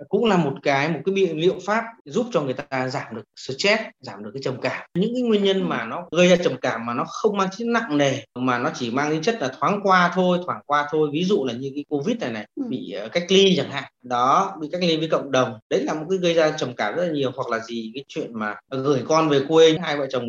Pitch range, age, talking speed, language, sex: 130-180 Hz, 20-39, 280 wpm, Vietnamese, male